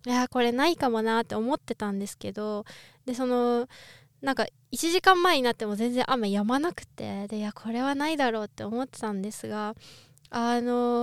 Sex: female